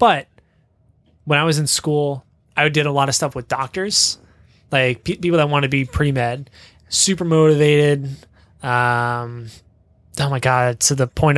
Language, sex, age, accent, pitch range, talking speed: English, male, 20-39, American, 120-170 Hz, 160 wpm